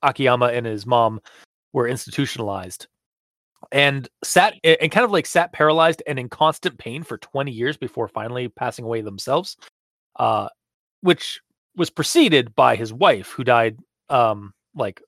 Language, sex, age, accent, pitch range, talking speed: English, male, 30-49, American, 120-165 Hz, 145 wpm